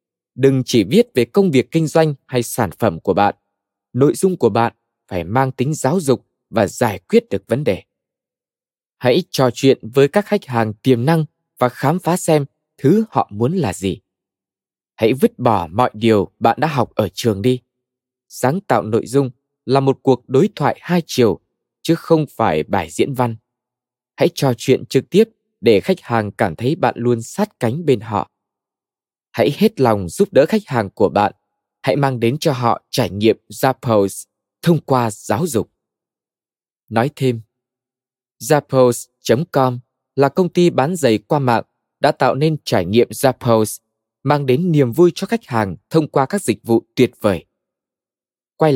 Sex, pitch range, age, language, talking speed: male, 115-155 Hz, 20-39, Vietnamese, 175 wpm